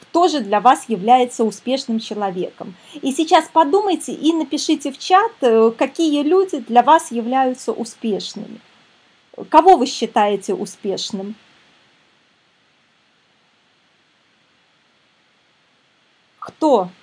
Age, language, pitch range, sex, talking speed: 20-39, Russian, 210-295 Hz, female, 85 wpm